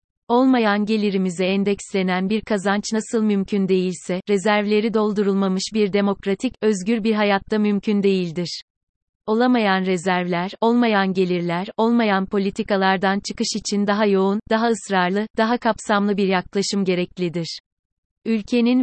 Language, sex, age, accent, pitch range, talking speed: Turkish, female, 30-49, native, 195-225 Hz, 110 wpm